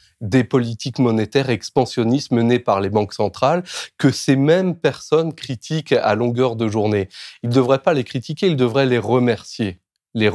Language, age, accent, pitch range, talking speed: French, 30-49, French, 105-135 Hz, 170 wpm